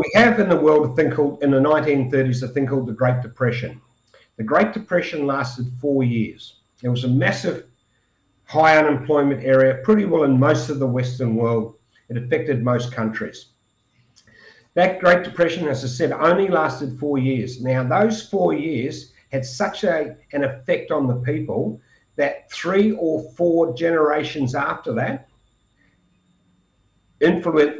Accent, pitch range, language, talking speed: Australian, 125-155 Hz, English, 155 wpm